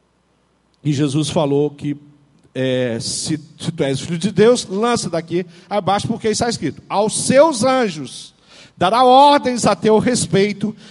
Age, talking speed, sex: 50-69, 130 wpm, male